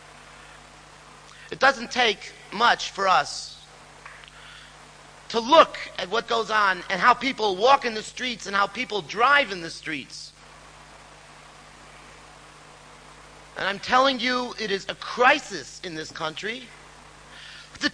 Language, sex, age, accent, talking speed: English, male, 40-59, American, 125 wpm